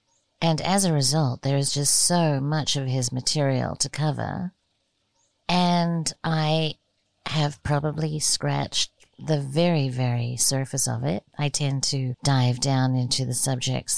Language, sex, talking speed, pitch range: English, female, 140 wpm, 135-175 Hz